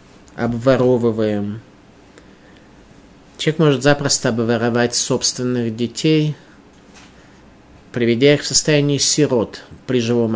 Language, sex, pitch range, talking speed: Russian, male, 115-140 Hz, 80 wpm